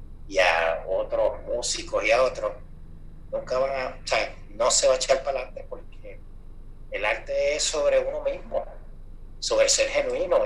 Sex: male